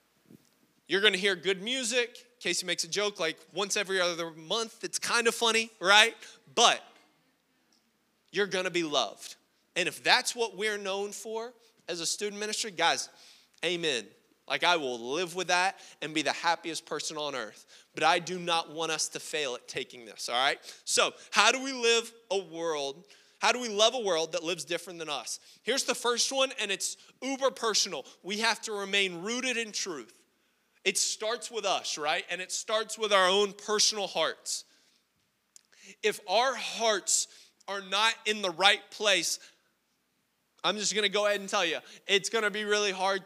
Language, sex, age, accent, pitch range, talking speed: English, male, 20-39, American, 175-220 Hz, 185 wpm